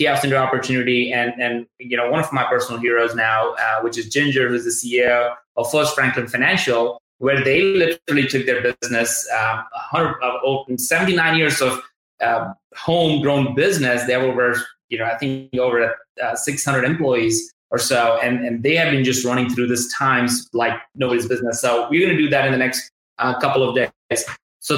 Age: 20-39